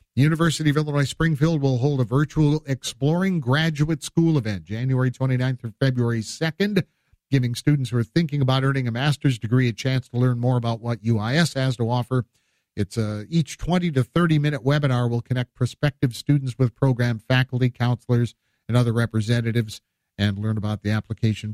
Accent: American